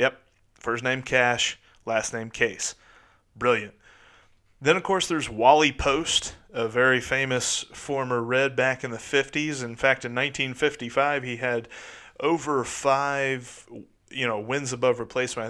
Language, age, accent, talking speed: English, 30-49, American, 135 wpm